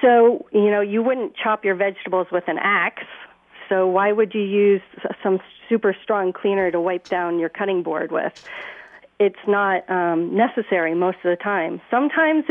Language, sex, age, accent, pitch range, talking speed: English, female, 40-59, American, 180-220 Hz, 175 wpm